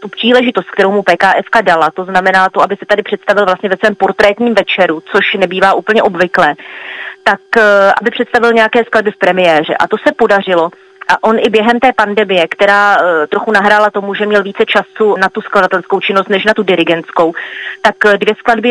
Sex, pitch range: female, 185-215 Hz